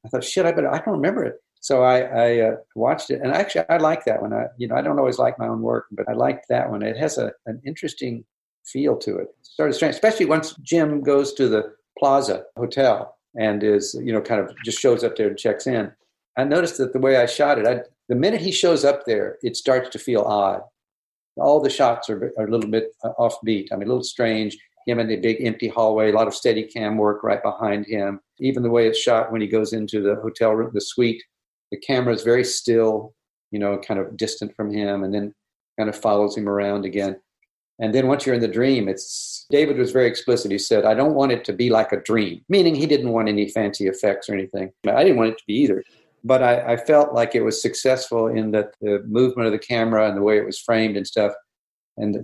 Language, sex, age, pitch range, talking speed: English, male, 50-69, 105-125 Hz, 245 wpm